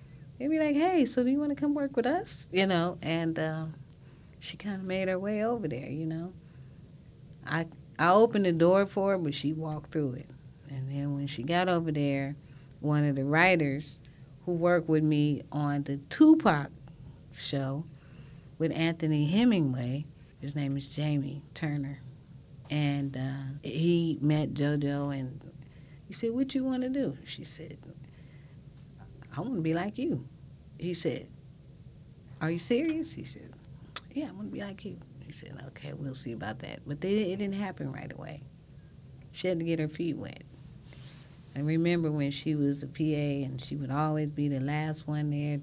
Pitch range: 140-170 Hz